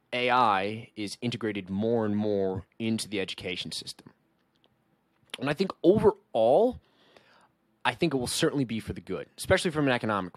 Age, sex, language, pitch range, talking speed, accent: 20-39, male, English, 95-120 Hz, 155 wpm, American